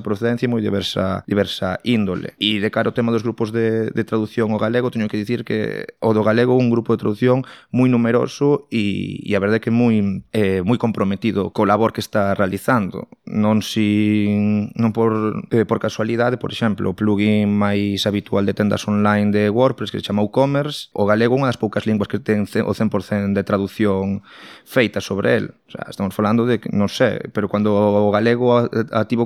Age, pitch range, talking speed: 20-39, 105-115 Hz, 195 wpm